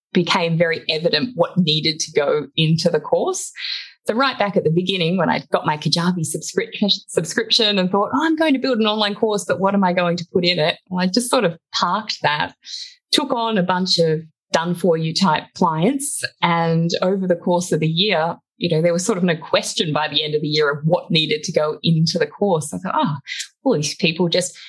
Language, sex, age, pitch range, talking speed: English, female, 20-39, 160-220 Hz, 230 wpm